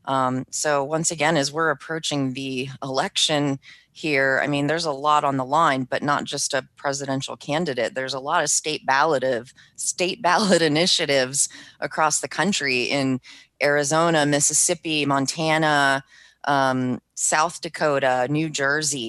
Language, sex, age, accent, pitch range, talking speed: English, female, 30-49, American, 135-170 Hz, 145 wpm